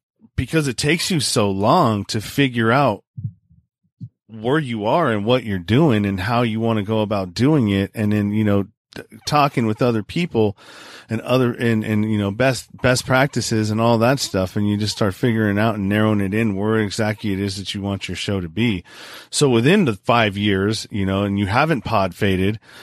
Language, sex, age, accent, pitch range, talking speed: English, male, 40-59, American, 100-125 Hz, 210 wpm